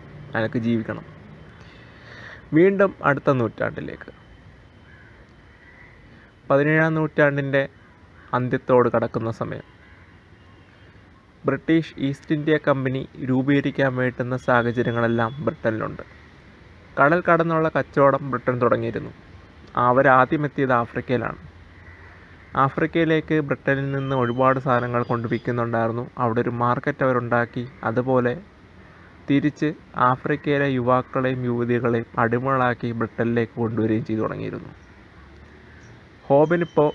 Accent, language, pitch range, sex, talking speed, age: native, Malayalam, 110-140 Hz, male, 75 wpm, 20-39